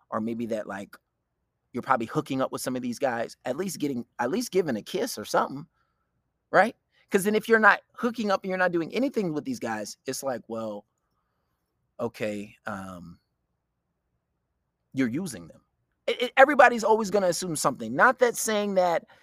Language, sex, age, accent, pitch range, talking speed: English, male, 30-49, American, 145-235 Hz, 180 wpm